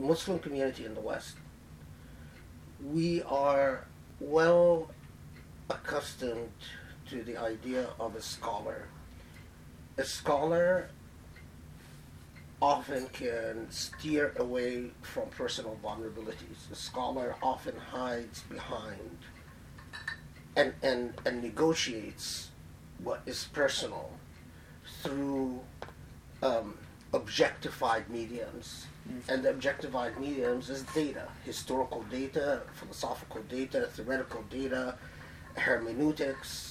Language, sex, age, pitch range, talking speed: English, male, 40-59, 85-140 Hz, 85 wpm